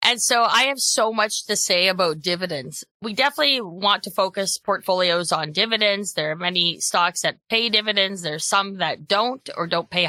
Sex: female